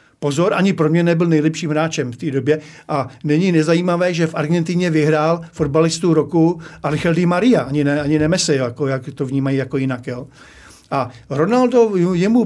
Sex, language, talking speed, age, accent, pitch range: male, Czech, 170 wpm, 50-69, native, 145-170 Hz